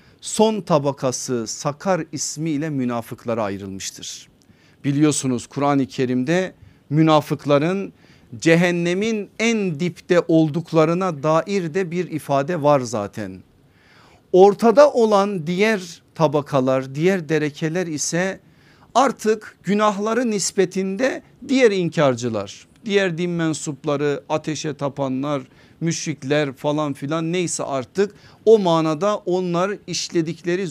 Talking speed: 90 wpm